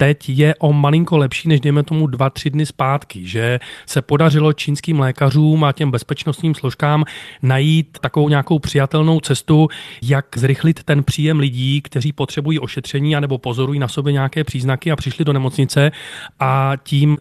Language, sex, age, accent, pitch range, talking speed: Czech, male, 30-49, native, 130-145 Hz, 160 wpm